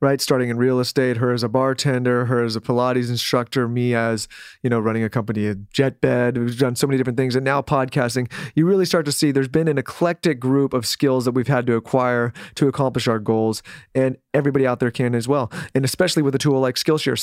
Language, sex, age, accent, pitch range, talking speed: English, male, 30-49, American, 120-145 Hz, 235 wpm